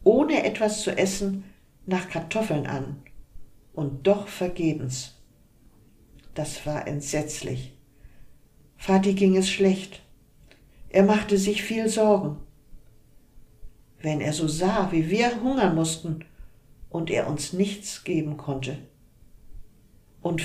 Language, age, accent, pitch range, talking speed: German, 50-69, German, 135-200 Hz, 110 wpm